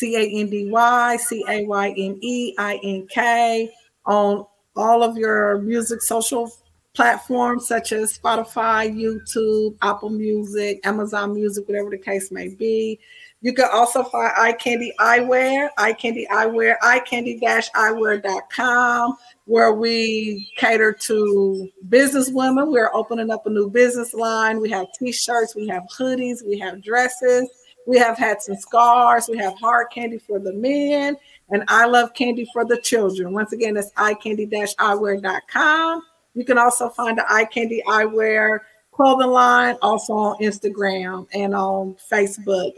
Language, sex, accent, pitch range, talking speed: English, female, American, 210-240 Hz, 150 wpm